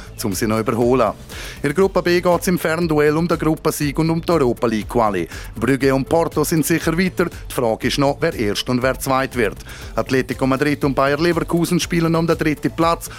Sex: male